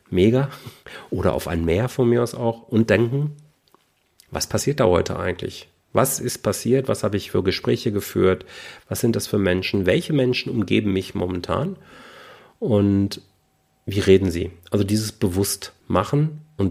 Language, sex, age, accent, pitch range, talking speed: German, male, 40-59, German, 90-115 Hz, 160 wpm